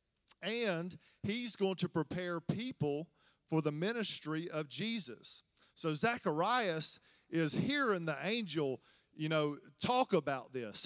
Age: 40-59